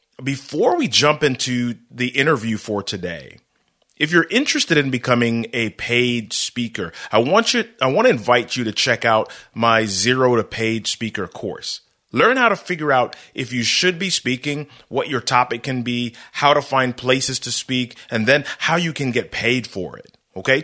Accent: American